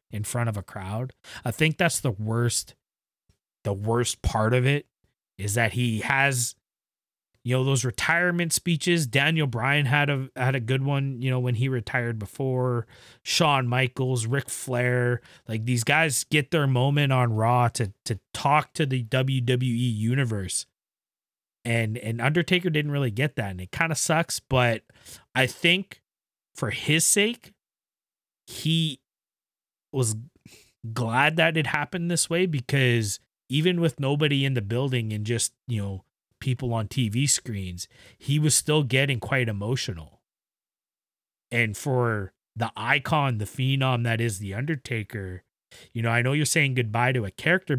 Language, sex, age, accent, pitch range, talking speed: English, male, 30-49, American, 115-145 Hz, 155 wpm